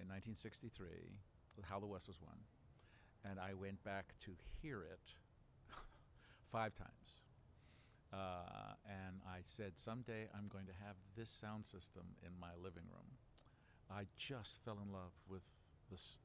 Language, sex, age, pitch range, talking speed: English, male, 50-69, 90-110 Hz, 145 wpm